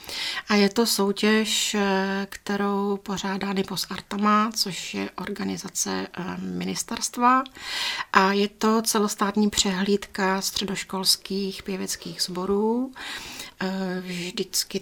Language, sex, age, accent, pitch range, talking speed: Czech, female, 40-59, native, 180-195 Hz, 85 wpm